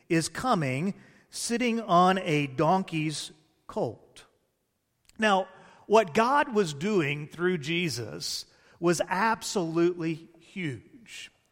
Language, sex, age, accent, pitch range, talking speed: English, male, 40-59, American, 165-210 Hz, 90 wpm